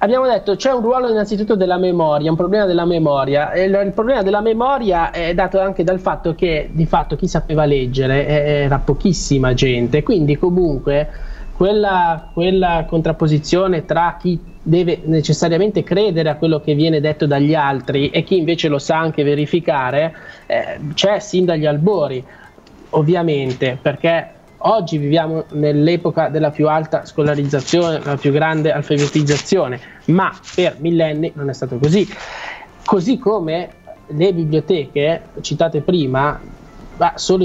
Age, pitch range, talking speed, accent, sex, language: 20-39, 145-180 Hz, 145 wpm, native, male, Italian